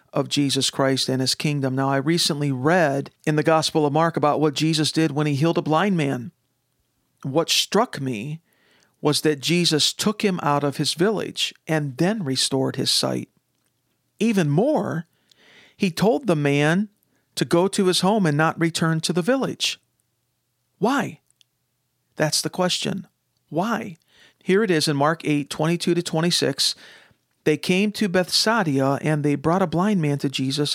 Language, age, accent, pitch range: English, 50-69, American, 145-180 Hz